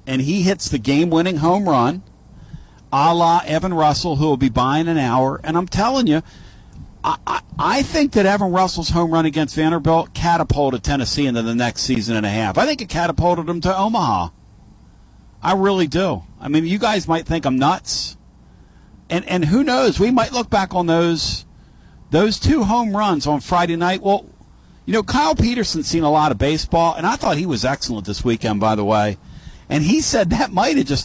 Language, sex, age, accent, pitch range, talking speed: English, male, 50-69, American, 120-180 Hz, 200 wpm